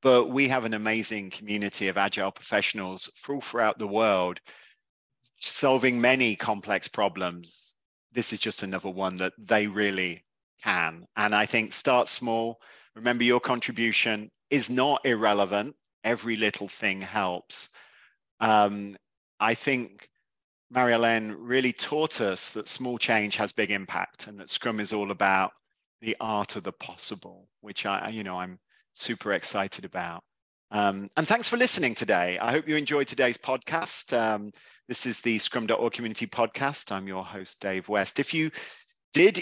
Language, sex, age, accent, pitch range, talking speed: English, male, 30-49, British, 100-120 Hz, 150 wpm